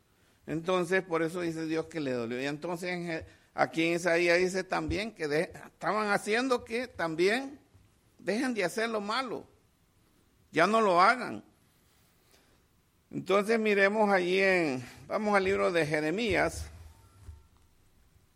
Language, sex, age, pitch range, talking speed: English, male, 50-69, 120-200 Hz, 125 wpm